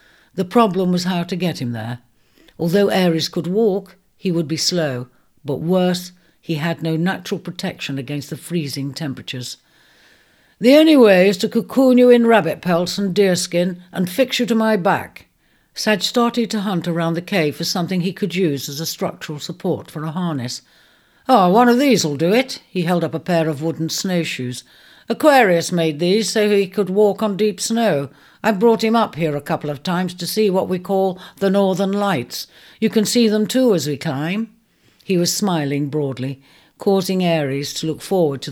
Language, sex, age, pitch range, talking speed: English, female, 60-79, 150-200 Hz, 195 wpm